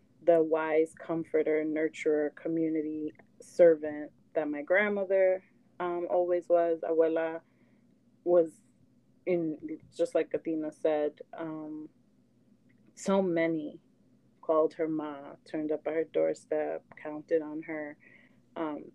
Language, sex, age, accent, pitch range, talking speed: English, female, 30-49, American, 160-195 Hz, 110 wpm